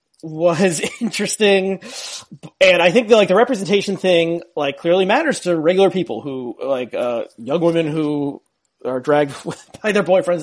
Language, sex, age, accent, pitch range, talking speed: English, male, 30-49, American, 145-185 Hz, 160 wpm